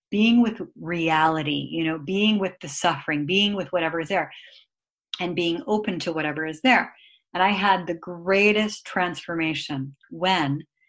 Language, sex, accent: English, female, American